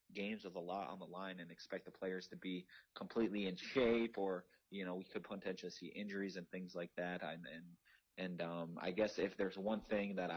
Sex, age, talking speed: male, 30-49, 220 wpm